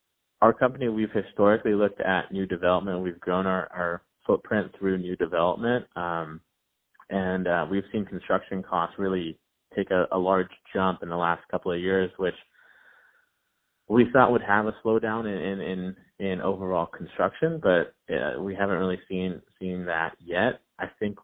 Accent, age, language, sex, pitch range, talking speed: American, 20-39, English, male, 85-100 Hz, 165 wpm